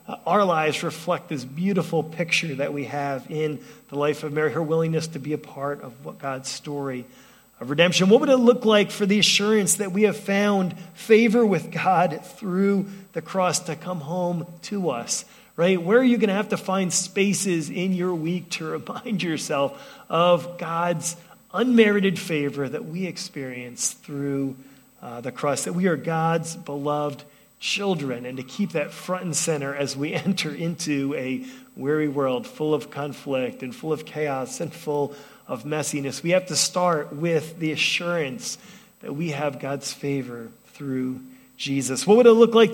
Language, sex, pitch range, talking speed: English, male, 150-190 Hz, 175 wpm